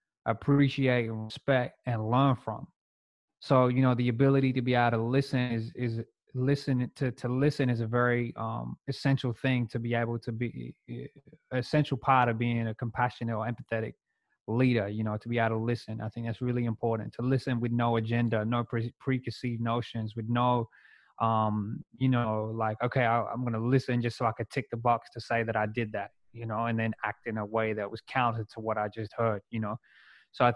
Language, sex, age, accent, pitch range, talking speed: English, male, 20-39, American, 115-125 Hz, 210 wpm